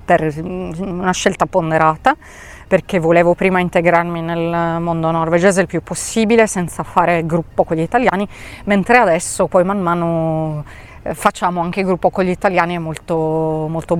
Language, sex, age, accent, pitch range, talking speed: Italian, female, 30-49, native, 170-200 Hz, 140 wpm